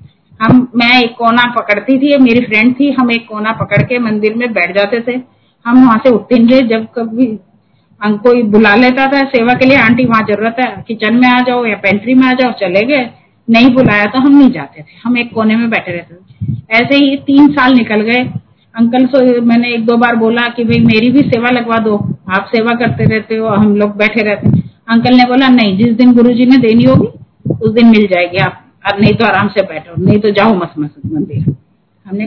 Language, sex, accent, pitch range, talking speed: Hindi, female, native, 205-245 Hz, 220 wpm